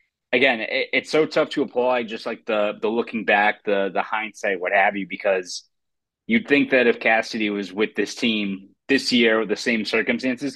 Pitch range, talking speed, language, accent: 105-130 Hz, 200 wpm, English, American